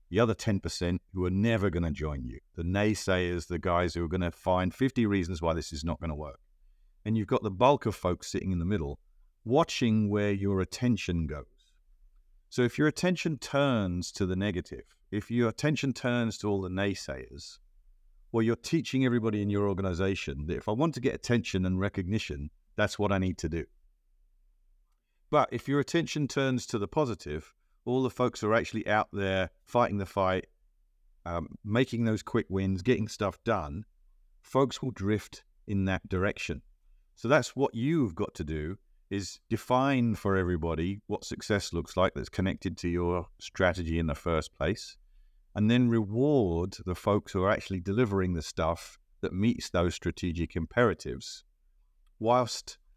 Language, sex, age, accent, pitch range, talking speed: English, male, 50-69, British, 85-115 Hz, 175 wpm